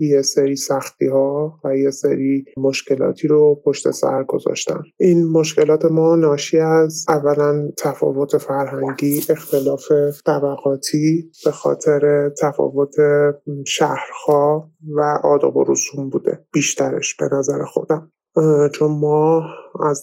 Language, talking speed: Persian, 110 wpm